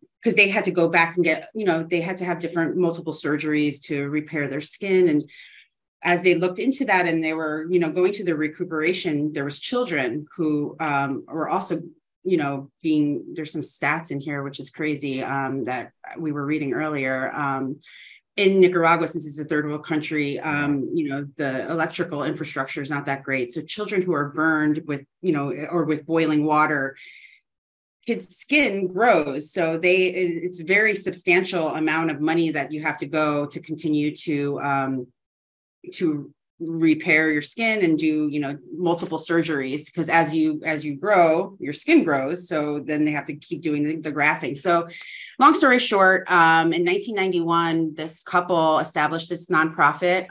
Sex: female